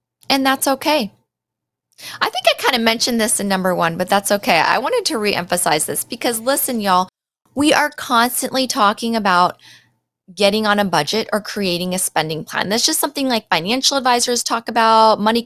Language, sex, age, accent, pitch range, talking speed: English, female, 20-39, American, 210-265 Hz, 185 wpm